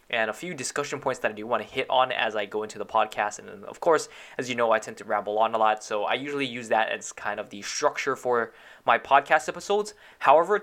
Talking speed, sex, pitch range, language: 260 wpm, male, 120-150 Hz, English